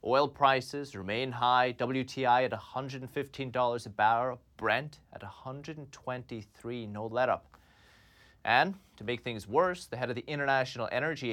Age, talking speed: 30-49, 135 wpm